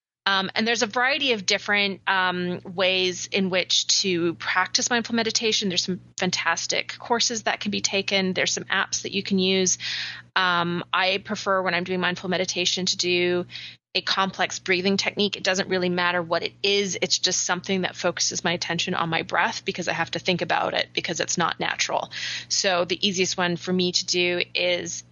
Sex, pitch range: female, 180-200 Hz